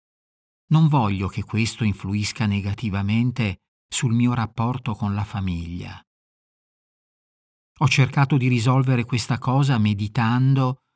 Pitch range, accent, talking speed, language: 105-135 Hz, native, 105 wpm, Italian